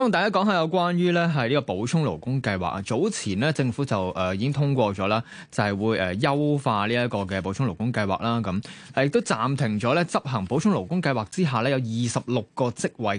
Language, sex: Chinese, male